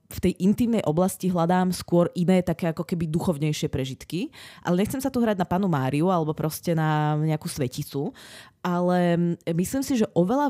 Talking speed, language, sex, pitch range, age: 170 wpm, Czech, female, 155-200 Hz, 20-39